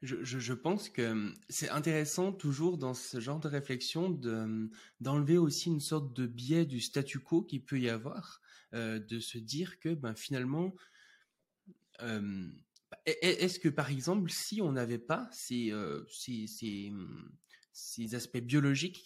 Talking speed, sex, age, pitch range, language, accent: 155 wpm, male, 20-39, 120-165 Hz, French, French